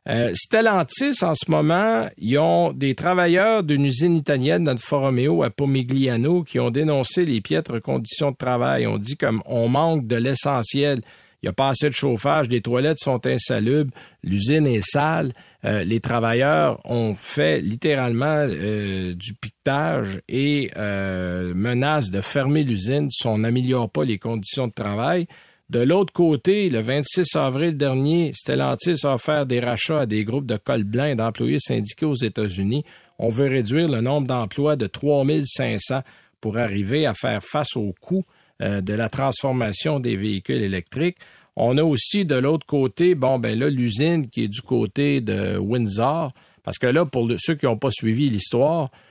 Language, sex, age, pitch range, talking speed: French, male, 50-69, 115-150 Hz, 170 wpm